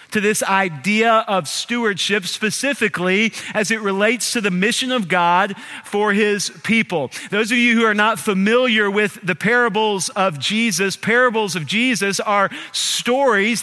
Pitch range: 200-240 Hz